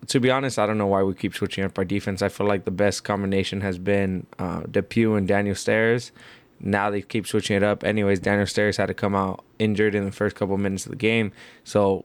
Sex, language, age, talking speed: male, English, 20-39, 245 wpm